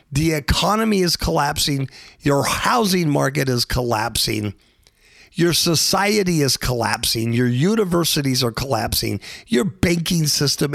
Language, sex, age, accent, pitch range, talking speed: English, male, 50-69, American, 130-180 Hz, 110 wpm